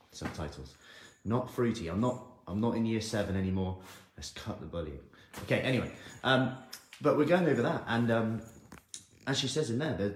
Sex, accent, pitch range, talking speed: male, British, 95-125 Hz, 185 wpm